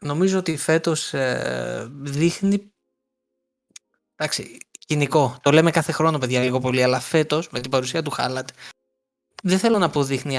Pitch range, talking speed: 130-180 Hz, 150 wpm